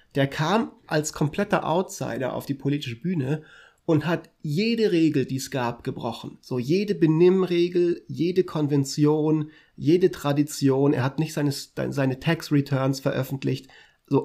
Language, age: German, 30-49